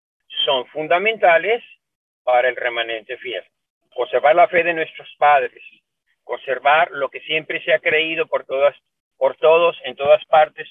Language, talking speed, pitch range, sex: Spanish, 145 wpm, 130-200 Hz, male